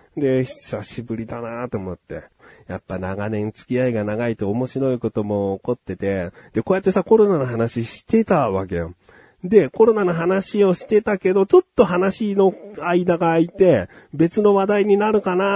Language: Japanese